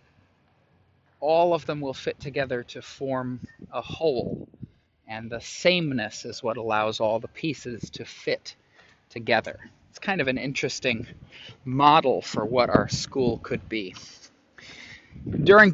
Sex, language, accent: male, English, American